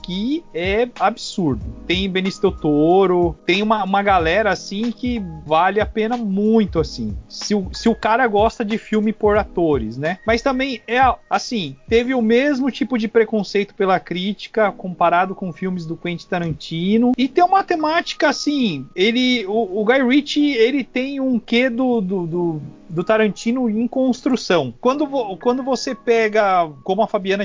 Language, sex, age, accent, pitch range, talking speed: Portuguese, male, 40-59, Brazilian, 180-235 Hz, 150 wpm